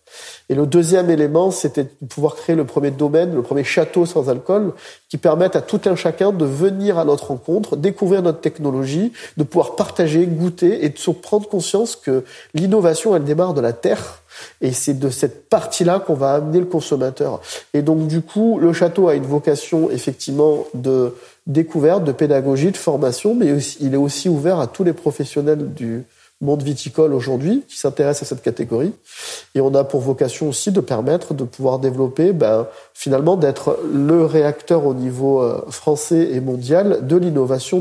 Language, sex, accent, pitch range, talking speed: French, male, French, 145-185 Hz, 180 wpm